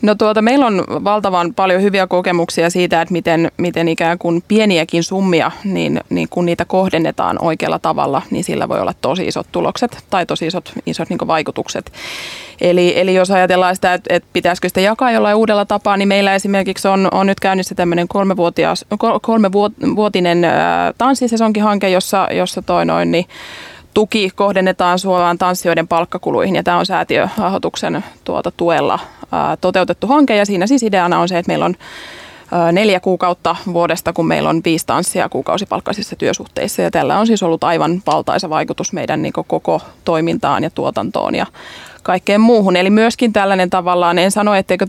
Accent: native